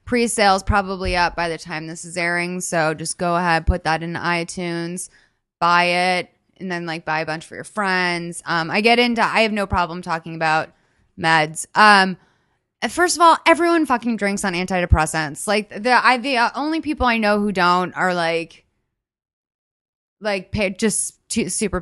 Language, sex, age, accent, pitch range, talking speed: English, female, 20-39, American, 175-230 Hz, 180 wpm